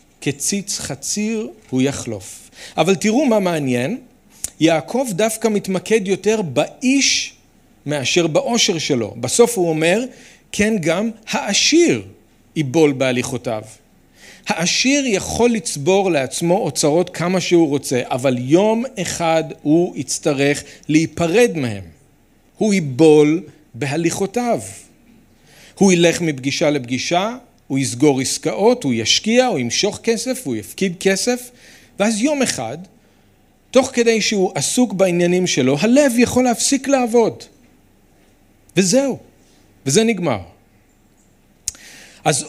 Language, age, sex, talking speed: Hebrew, 40-59, male, 105 wpm